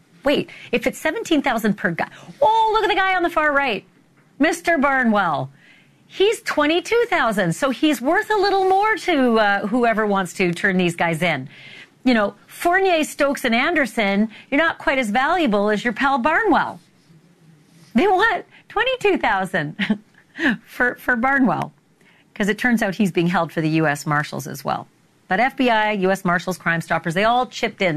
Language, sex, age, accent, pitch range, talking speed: English, female, 40-59, American, 160-260 Hz, 165 wpm